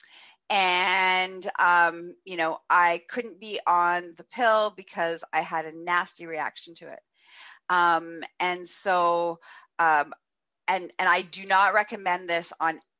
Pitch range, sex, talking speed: 160-195 Hz, female, 140 wpm